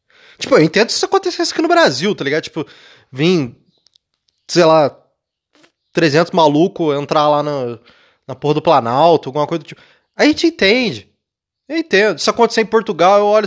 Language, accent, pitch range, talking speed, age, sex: Portuguese, Brazilian, 155-220 Hz, 185 wpm, 20-39, male